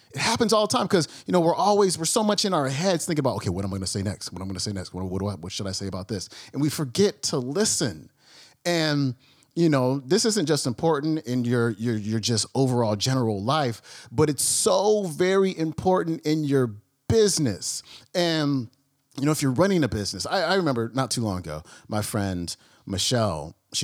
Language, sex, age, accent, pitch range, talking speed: English, male, 30-49, American, 95-140 Hz, 225 wpm